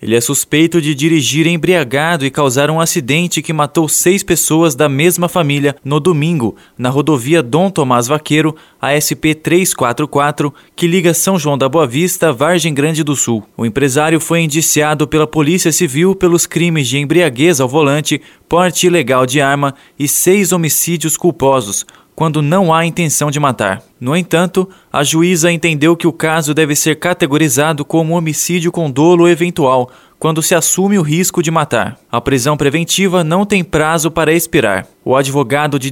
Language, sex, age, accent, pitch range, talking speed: Portuguese, male, 20-39, Brazilian, 145-170 Hz, 165 wpm